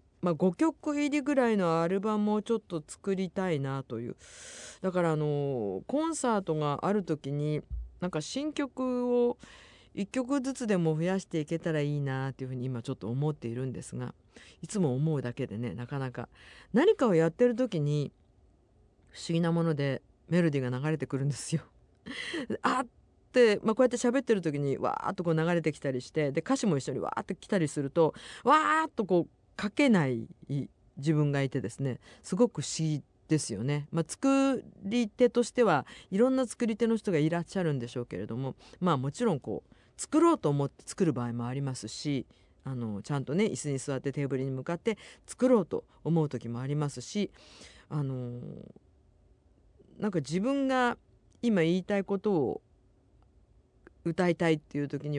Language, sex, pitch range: Japanese, female, 135-210 Hz